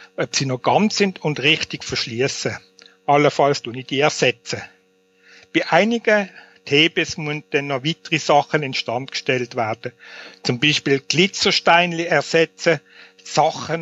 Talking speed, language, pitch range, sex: 120 wpm, German, 140-175 Hz, male